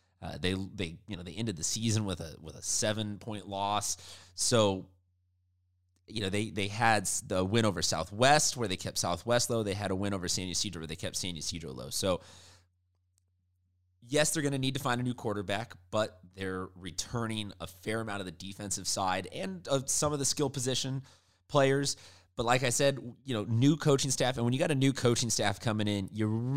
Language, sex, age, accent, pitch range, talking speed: English, male, 30-49, American, 90-115 Hz, 210 wpm